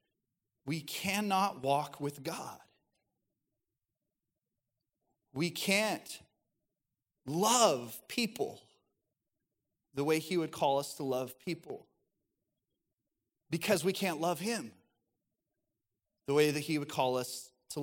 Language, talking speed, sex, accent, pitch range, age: English, 105 wpm, male, American, 140-185 Hz, 30-49